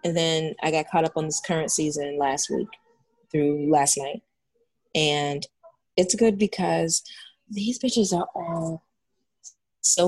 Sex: female